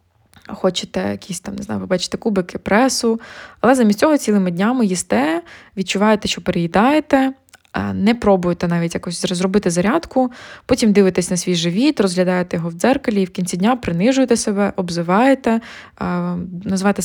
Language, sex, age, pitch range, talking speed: Ukrainian, female, 20-39, 185-225 Hz, 140 wpm